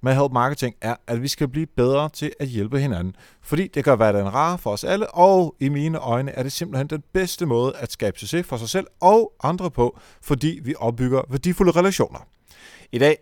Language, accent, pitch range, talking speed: Danish, native, 115-150 Hz, 210 wpm